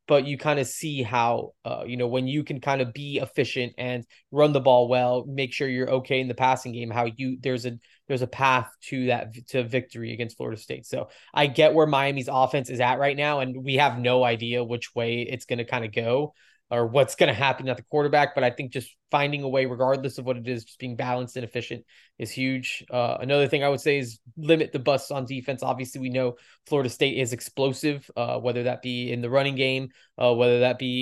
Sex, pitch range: male, 120-135 Hz